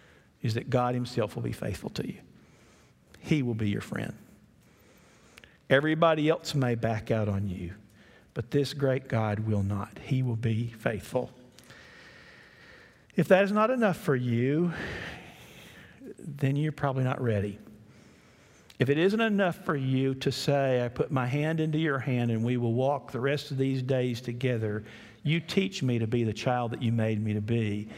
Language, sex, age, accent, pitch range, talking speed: English, male, 50-69, American, 115-150 Hz, 175 wpm